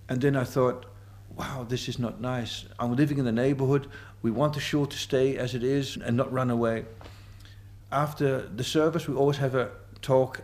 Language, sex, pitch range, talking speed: English, male, 105-145 Hz, 200 wpm